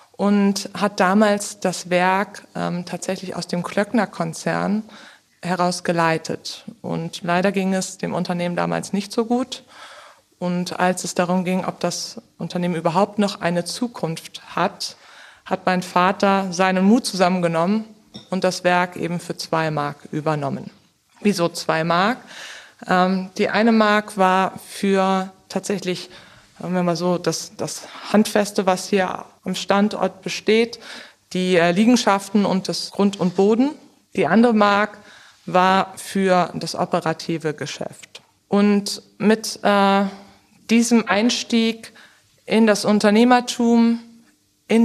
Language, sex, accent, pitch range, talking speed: German, female, German, 180-210 Hz, 120 wpm